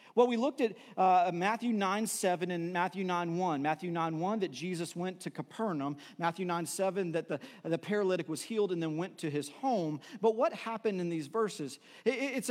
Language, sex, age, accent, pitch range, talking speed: English, male, 40-59, American, 190-245 Hz, 200 wpm